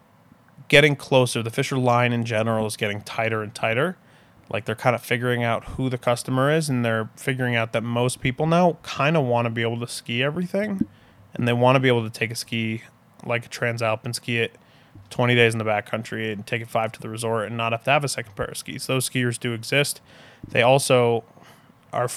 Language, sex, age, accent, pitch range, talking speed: English, male, 20-39, American, 115-135 Hz, 225 wpm